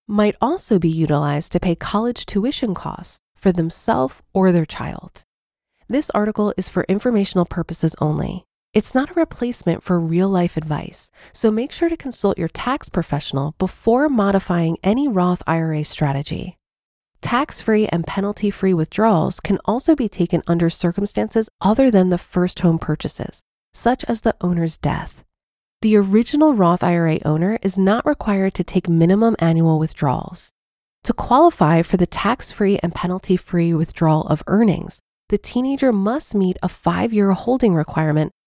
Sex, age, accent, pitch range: female, 30-49, American, 165-215 Hz